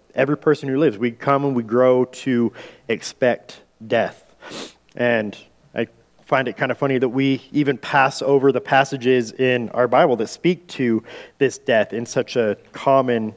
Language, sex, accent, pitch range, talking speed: English, male, American, 115-135 Hz, 170 wpm